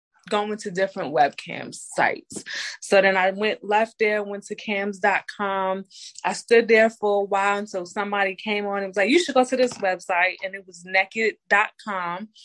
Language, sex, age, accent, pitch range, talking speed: English, female, 20-39, American, 185-215 Hz, 180 wpm